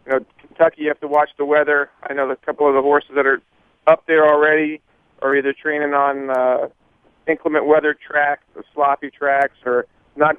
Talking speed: 195 wpm